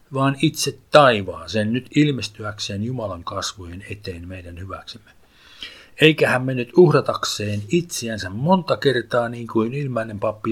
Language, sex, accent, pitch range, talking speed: Finnish, male, native, 100-145 Hz, 125 wpm